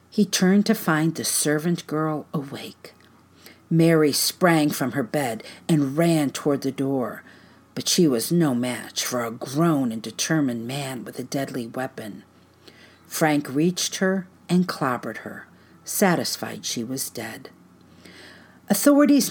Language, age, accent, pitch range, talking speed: English, 50-69, American, 130-180 Hz, 135 wpm